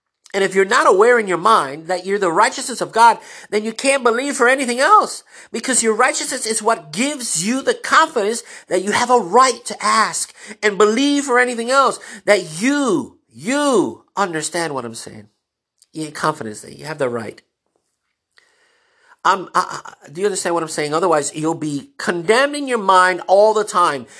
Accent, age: American, 50-69